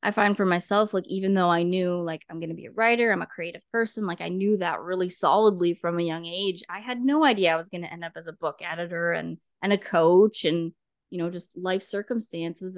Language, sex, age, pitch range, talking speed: English, female, 20-39, 165-190 Hz, 255 wpm